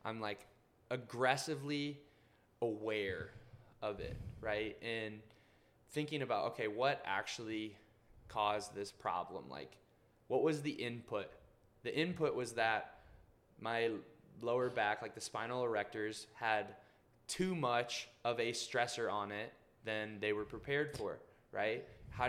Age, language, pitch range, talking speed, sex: 20-39, English, 105-120 Hz, 125 wpm, male